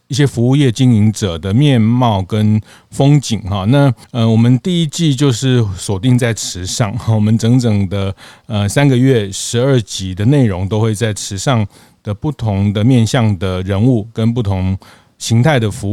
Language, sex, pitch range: Chinese, male, 105-125 Hz